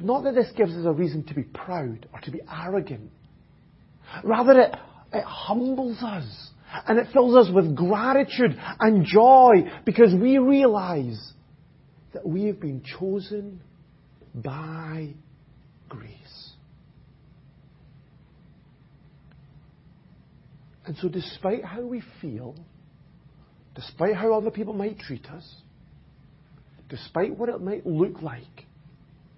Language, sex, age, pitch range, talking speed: English, male, 40-59, 145-200 Hz, 115 wpm